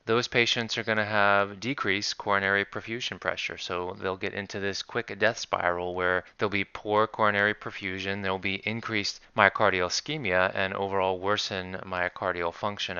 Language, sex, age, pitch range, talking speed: English, male, 30-49, 90-105 Hz, 155 wpm